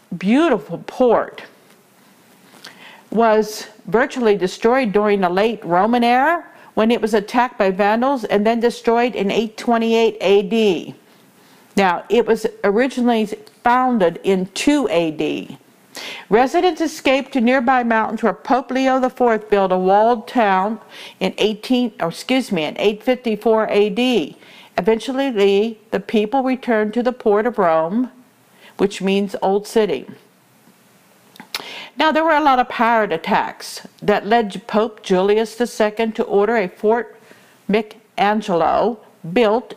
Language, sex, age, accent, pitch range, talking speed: English, female, 50-69, American, 205-245 Hz, 125 wpm